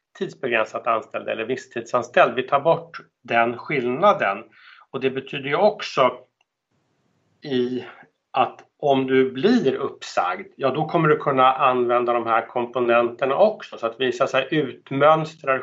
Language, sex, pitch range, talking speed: Swedish, male, 115-180 Hz, 135 wpm